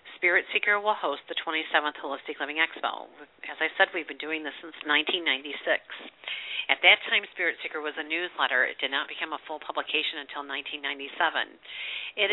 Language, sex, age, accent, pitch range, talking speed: English, female, 50-69, American, 155-195 Hz, 175 wpm